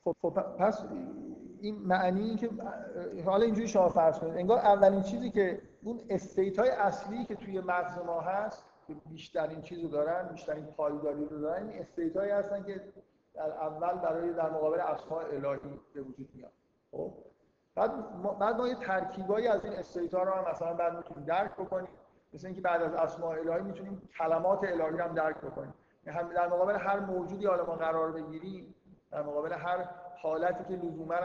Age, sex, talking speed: 50-69, male, 155 wpm